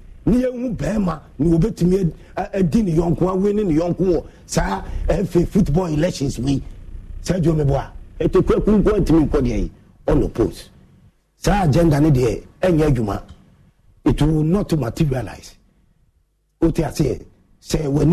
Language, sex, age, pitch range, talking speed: English, male, 50-69, 135-185 Hz, 120 wpm